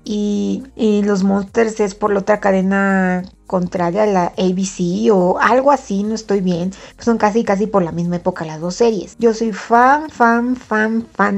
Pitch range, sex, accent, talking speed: 190-230 Hz, female, Mexican, 190 wpm